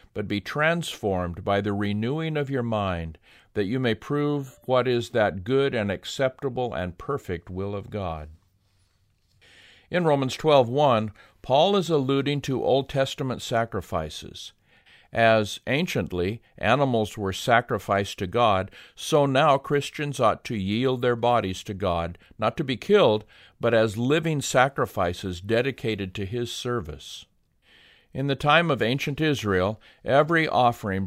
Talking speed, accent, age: 140 wpm, American, 50-69